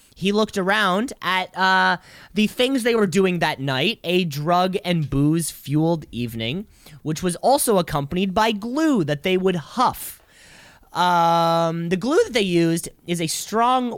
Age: 20-39